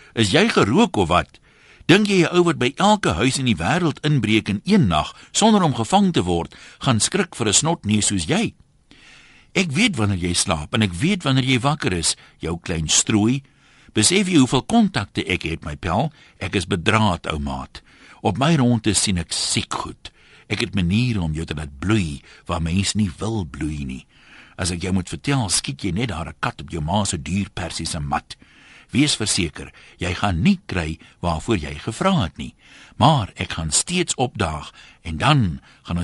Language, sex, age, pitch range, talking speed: Dutch, male, 60-79, 85-140 Hz, 195 wpm